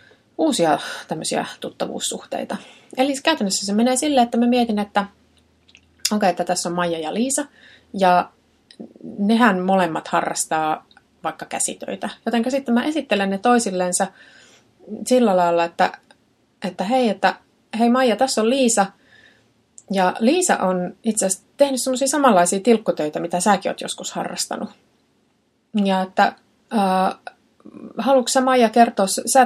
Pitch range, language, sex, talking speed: 180-245 Hz, Finnish, female, 130 wpm